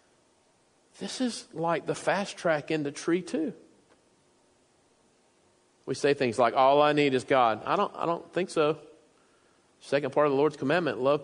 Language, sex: English, male